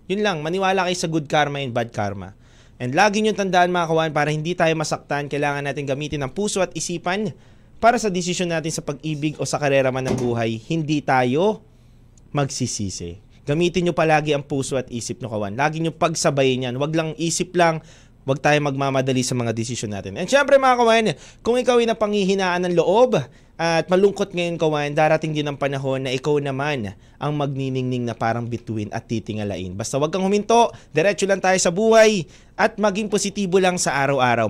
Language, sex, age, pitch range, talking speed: Filipino, male, 20-39, 135-210 Hz, 190 wpm